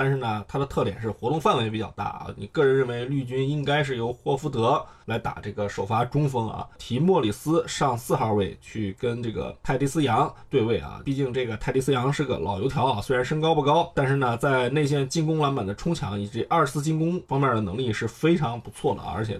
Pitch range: 110-150 Hz